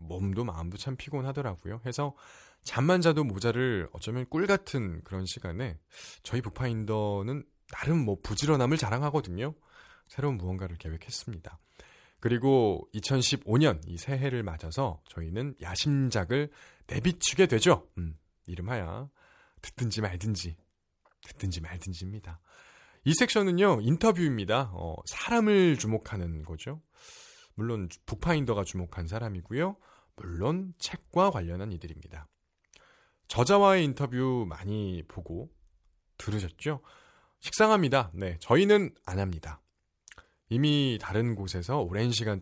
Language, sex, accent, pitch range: Korean, male, native, 90-145 Hz